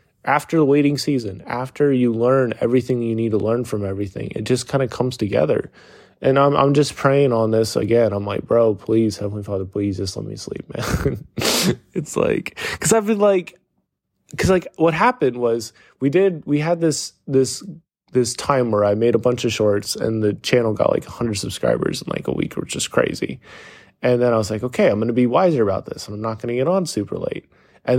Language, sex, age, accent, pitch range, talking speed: English, male, 20-39, American, 110-150 Hz, 220 wpm